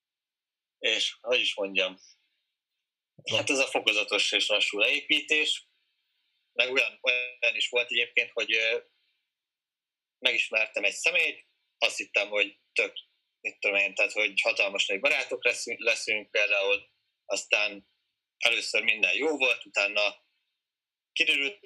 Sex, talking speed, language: male, 115 wpm, Hungarian